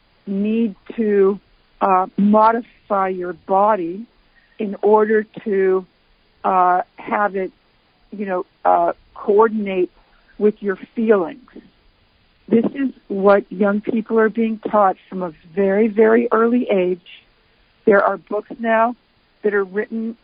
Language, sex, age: English, female, 60-79